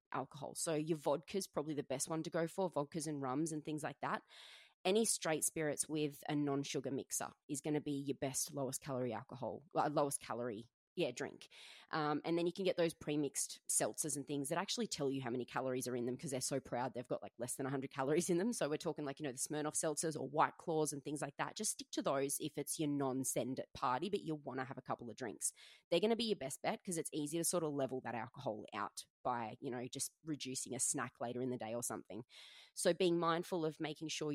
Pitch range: 140-180 Hz